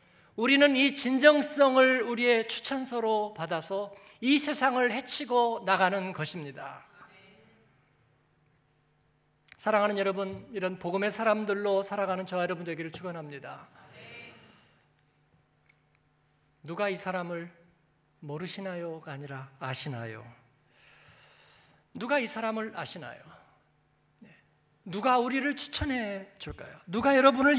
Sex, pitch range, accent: male, 150-225 Hz, native